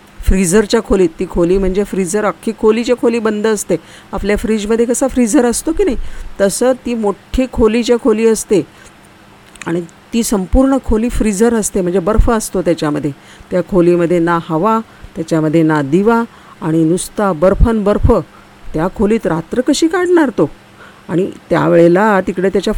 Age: 50-69